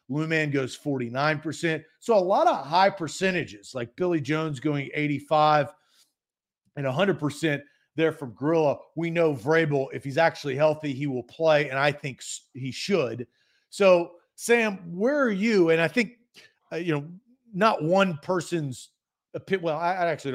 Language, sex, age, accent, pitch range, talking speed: English, male, 40-59, American, 145-190 Hz, 160 wpm